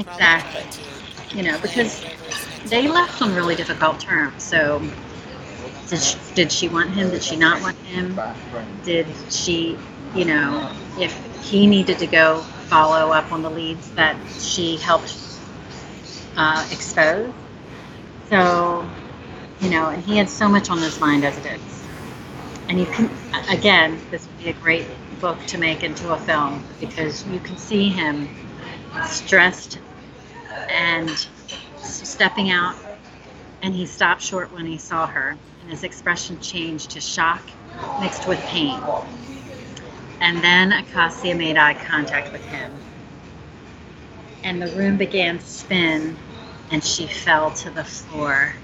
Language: English